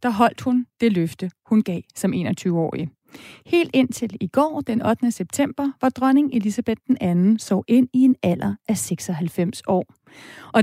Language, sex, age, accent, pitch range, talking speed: Danish, female, 30-49, native, 205-255 Hz, 170 wpm